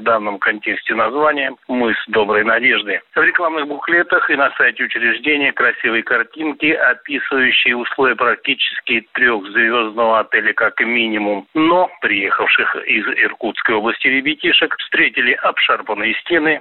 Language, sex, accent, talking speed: Russian, male, native, 120 wpm